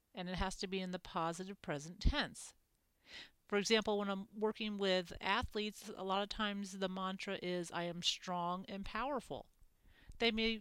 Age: 40-59